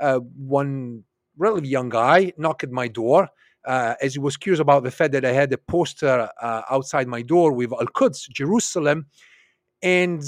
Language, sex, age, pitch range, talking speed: English, male, 40-59, 135-180 Hz, 175 wpm